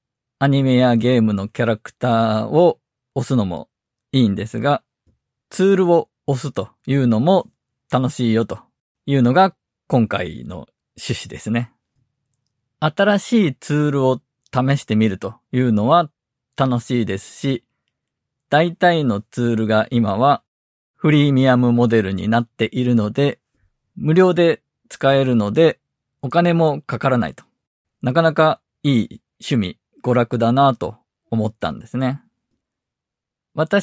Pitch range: 115-150 Hz